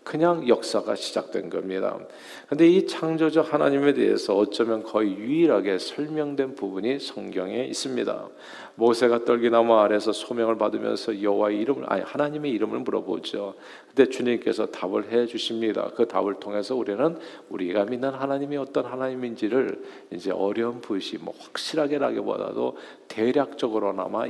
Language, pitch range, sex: Korean, 105-150 Hz, male